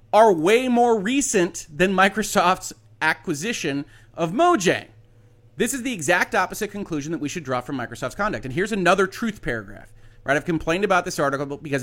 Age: 30-49